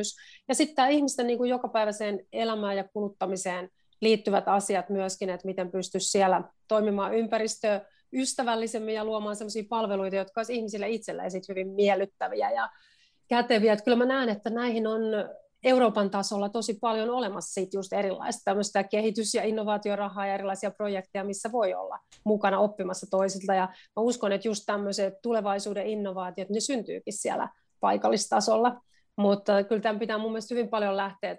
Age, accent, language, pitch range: 30-49, native, Finnish, 195-225 Hz